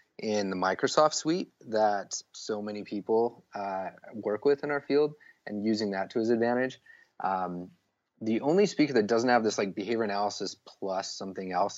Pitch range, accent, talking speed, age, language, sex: 95-115 Hz, American, 175 wpm, 30-49, English, male